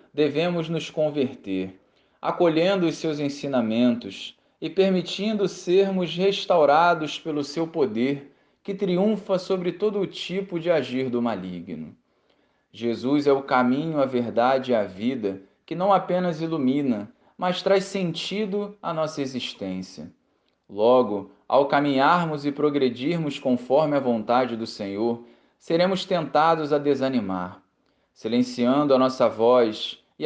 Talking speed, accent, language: 125 wpm, Brazilian, Portuguese